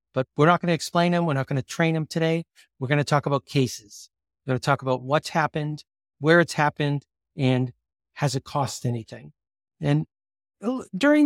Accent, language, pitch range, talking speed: American, English, 130-190 Hz, 195 wpm